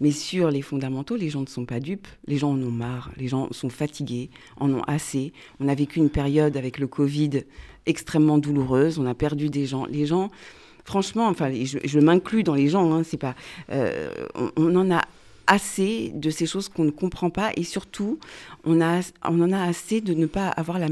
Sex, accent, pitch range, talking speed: female, French, 150-195 Hz, 200 wpm